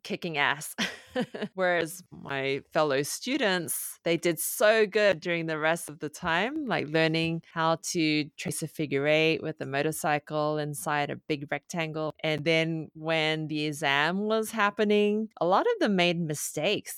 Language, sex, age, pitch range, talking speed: English, female, 20-39, 145-175 Hz, 155 wpm